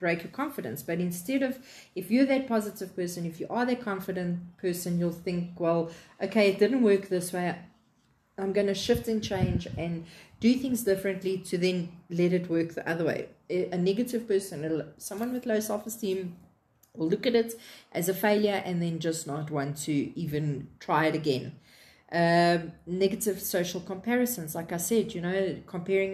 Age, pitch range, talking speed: 30-49, 165-195 Hz, 180 wpm